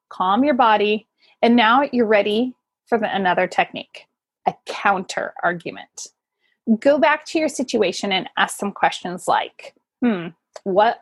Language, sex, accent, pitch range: English, female, American, 210-295 Hz